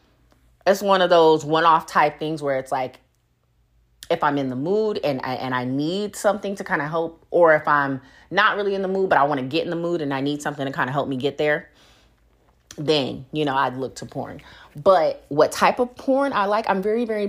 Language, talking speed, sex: English, 235 wpm, female